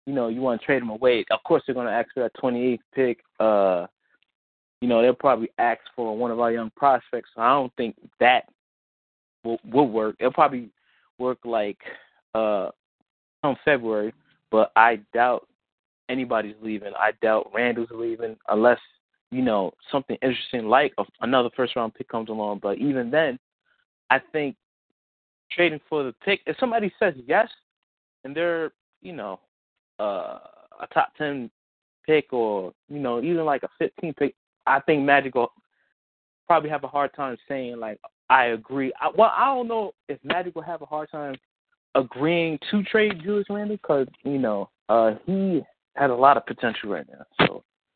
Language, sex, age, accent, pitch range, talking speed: English, male, 20-39, American, 115-150 Hz, 175 wpm